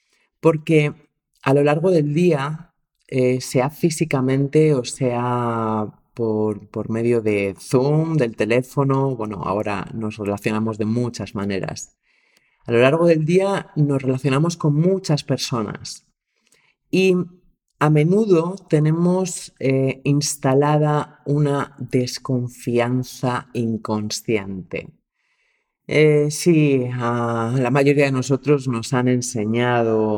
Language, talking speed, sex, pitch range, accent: Spanish, 105 wpm, male, 115-150 Hz, Spanish